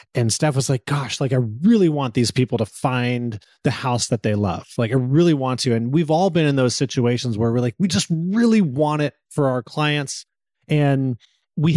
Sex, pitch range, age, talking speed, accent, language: male, 120-155 Hz, 30-49, 220 wpm, American, English